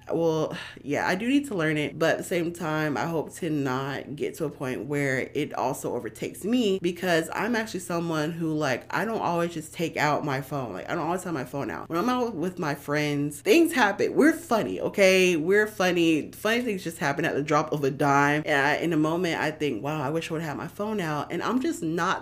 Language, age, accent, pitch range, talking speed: English, 20-39, American, 150-195 Hz, 245 wpm